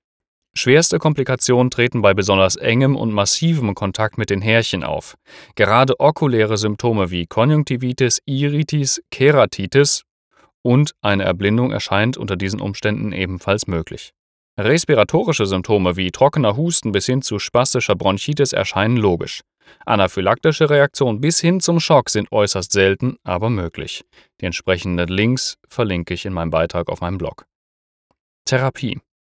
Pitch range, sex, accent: 95-130 Hz, male, German